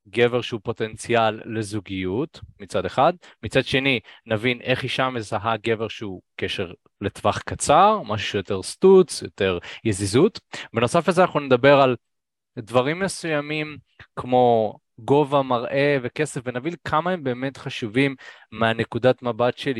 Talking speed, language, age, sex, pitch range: 125 wpm, Hebrew, 20-39, male, 110-135 Hz